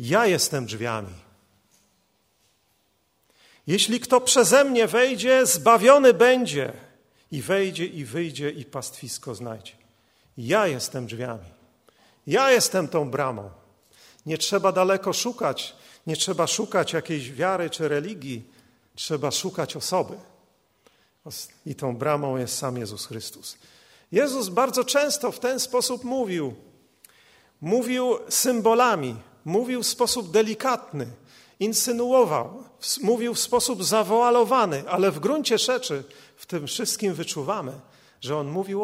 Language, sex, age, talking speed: Polish, male, 40-59, 115 wpm